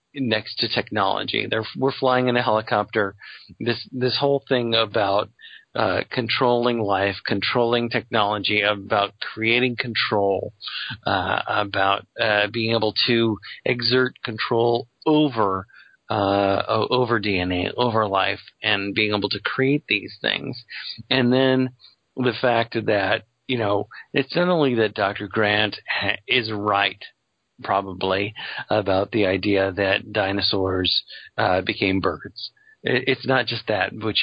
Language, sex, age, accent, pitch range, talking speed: English, male, 40-59, American, 100-120 Hz, 130 wpm